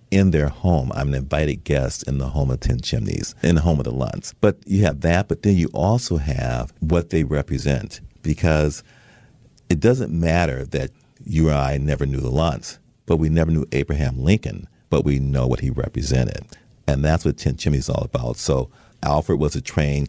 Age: 40-59